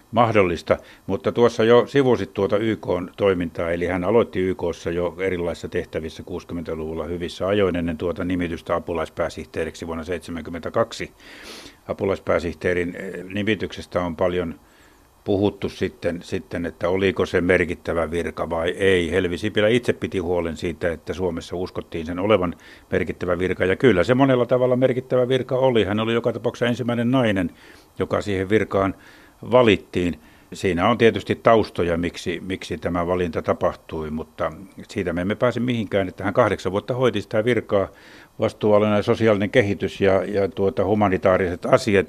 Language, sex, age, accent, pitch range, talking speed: Finnish, male, 60-79, native, 90-110 Hz, 140 wpm